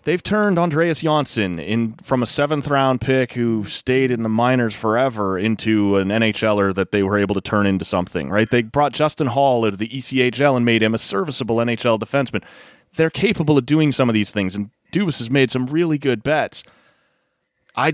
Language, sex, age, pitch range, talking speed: English, male, 30-49, 100-125 Hz, 200 wpm